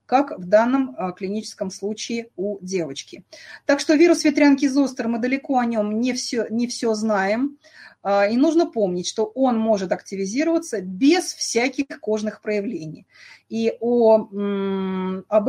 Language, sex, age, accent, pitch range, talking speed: Russian, female, 30-49, native, 195-260 Hz, 130 wpm